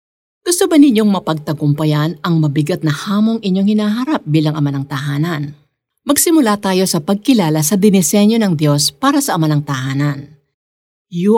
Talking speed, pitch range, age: 150 wpm, 150-205 Hz, 50-69